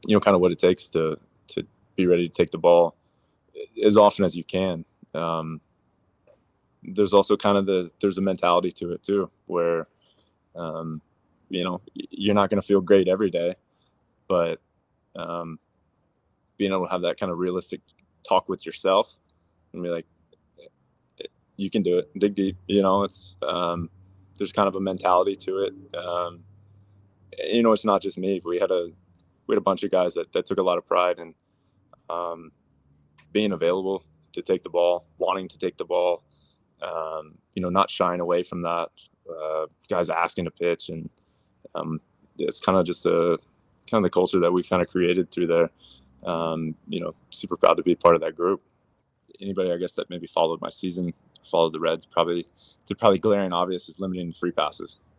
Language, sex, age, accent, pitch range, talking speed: English, male, 20-39, American, 85-100 Hz, 190 wpm